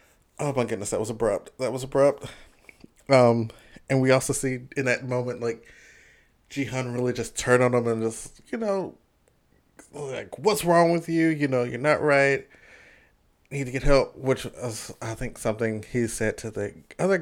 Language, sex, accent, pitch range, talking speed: English, male, American, 110-140 Hz, 180 wpm